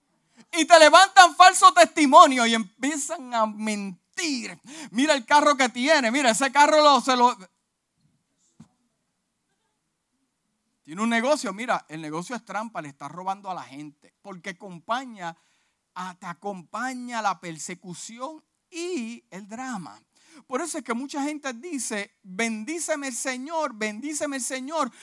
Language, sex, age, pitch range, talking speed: Spanish, male, 50-69, 195-290 Hz, 130 wpm